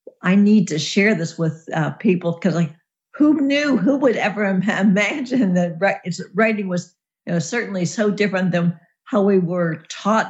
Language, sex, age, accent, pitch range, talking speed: English, female, 60-79, American, 170-205 Hz, 180 wpm